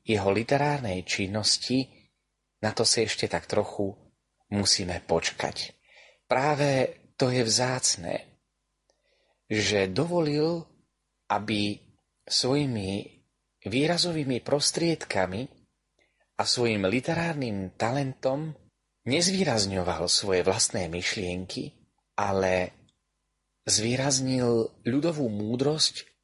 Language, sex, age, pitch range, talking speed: Slovak, male, 30-49, 100-130 Hz, 75 wpm